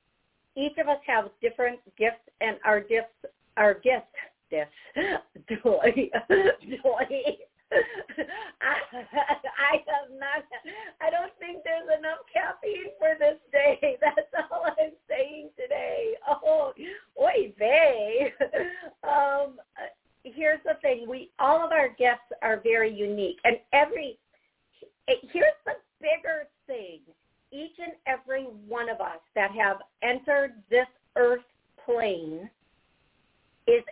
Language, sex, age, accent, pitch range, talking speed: English, female, 50-69, American, 225-300 Hz, 115 wpm